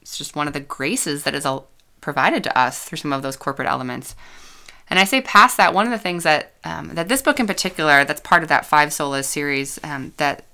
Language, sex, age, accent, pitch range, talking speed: English, female, 20-39, American, 140-170 Hz, 240 wpm